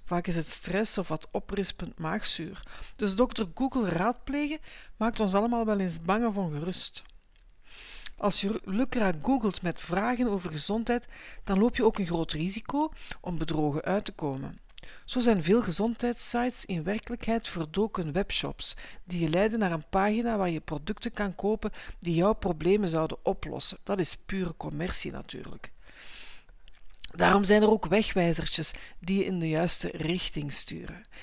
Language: Dutch